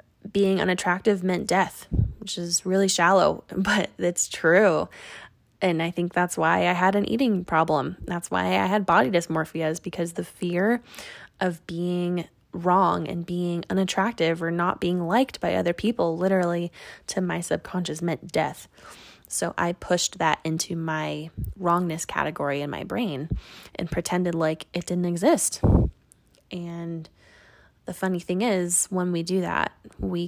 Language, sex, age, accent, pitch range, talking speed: English, female, 20-39, American, 165-190 Hz, 155 wpm